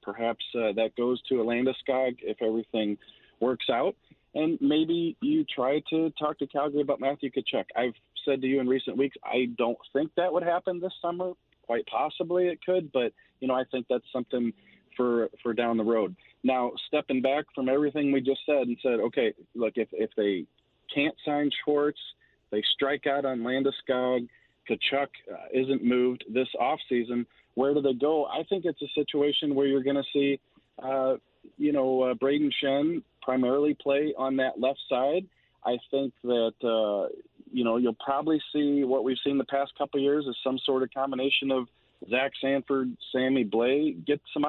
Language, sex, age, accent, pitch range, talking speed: English, male, 40-59, American, 125-150 Hz, 185 wpm